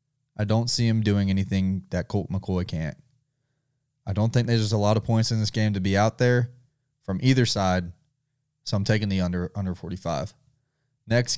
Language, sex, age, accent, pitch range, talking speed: English, male, 20-39, American, 100-135 Hz, 200 wpm